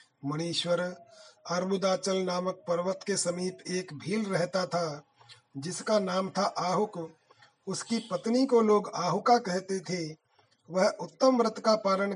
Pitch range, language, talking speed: 175-210 Hz, Hindi, 130 wpm